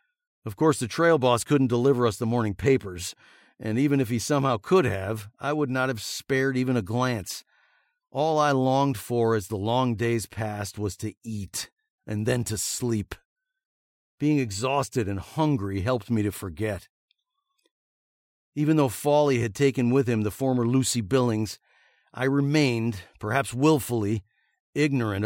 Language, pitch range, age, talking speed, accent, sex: English, 105-140 Hz, 50-69, 155 wpm, American, male